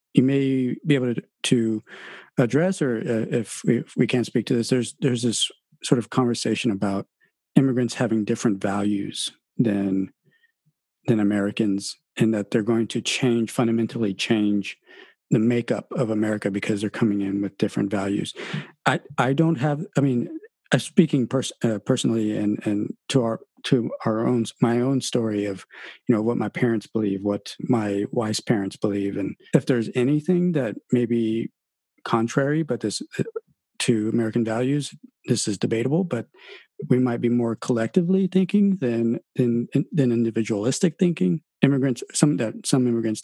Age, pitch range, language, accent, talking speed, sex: 50-69, 110-135 Hz, English, American, 160 wpm, male